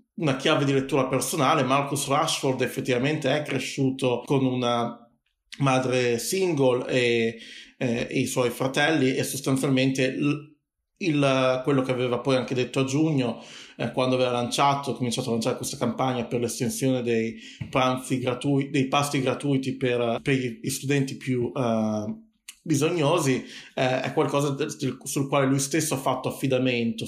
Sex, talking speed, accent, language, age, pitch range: male, 150 wpm, native, Italian, 30-49, 120-140 Hz